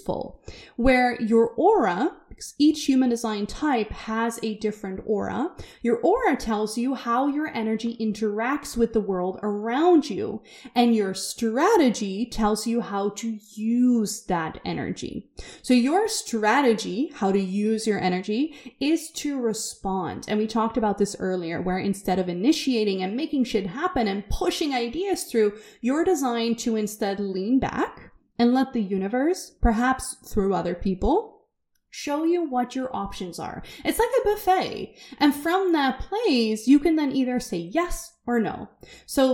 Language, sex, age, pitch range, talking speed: English, female, 20-39, 215-295 Hz, 155 wpm